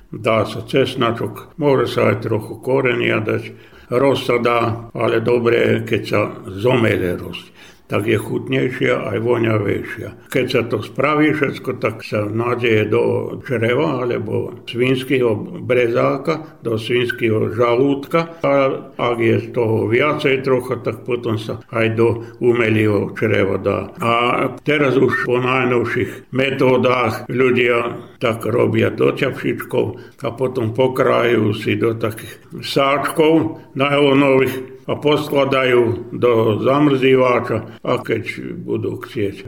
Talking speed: 125 wpm